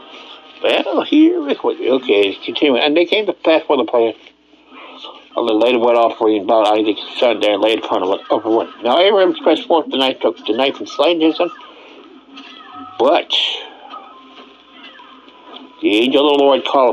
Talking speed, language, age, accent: 180 wpm, English, 60-79, American